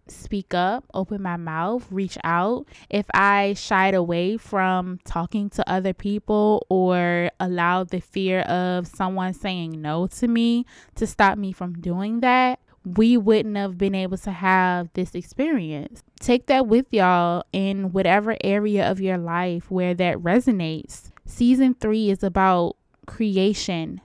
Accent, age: American, 10-29